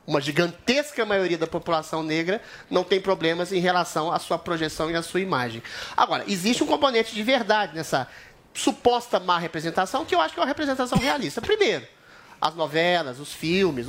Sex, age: male, 30-49